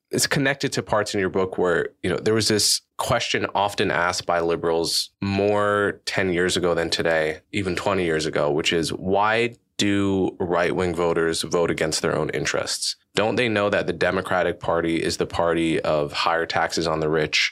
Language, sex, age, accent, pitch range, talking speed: English, male, 20-39, American, 85-100 Hz, 190 wpm